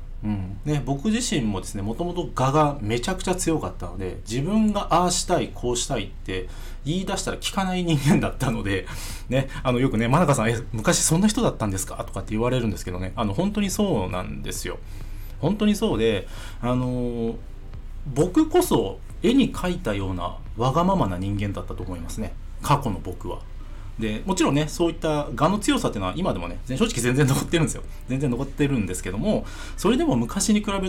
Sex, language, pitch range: male, Japanese, 100-160 Hz